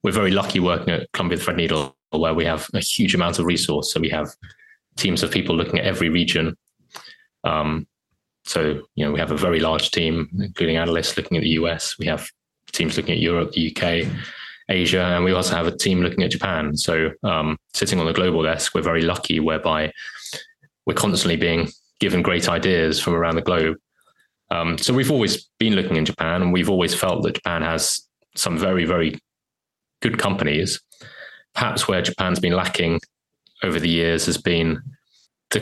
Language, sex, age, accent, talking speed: English, male, 20-39, British, 185 wpm